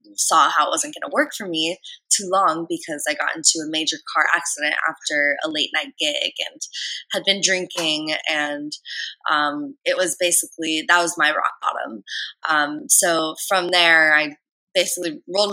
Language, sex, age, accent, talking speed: English, female, 20-39, American, 175 wpm